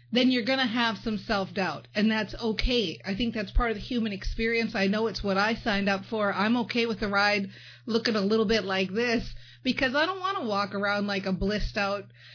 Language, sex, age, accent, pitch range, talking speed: English, female, 40-59, American, 195-240 Hz, 230 wpm